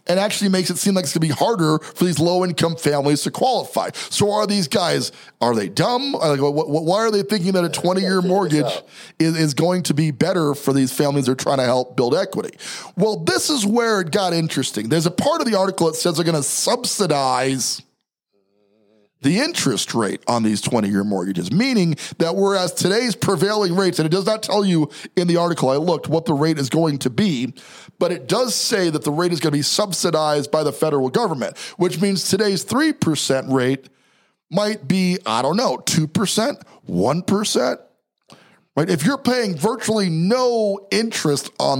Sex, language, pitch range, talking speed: male, English, 155-200 Hz, 190 wpm